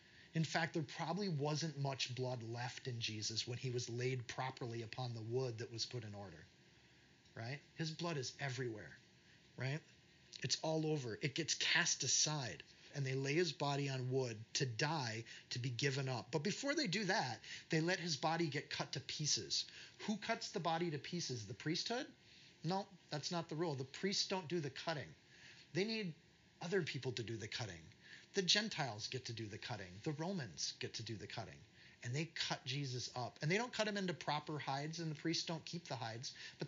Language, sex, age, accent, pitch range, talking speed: English, male, 30-49, American, 125-165 Hz, 205 wpm